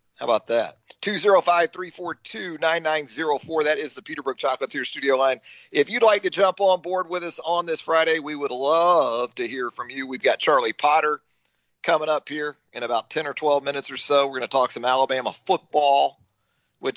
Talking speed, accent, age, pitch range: 190 wpm, American, 40-59, 135-160 Hz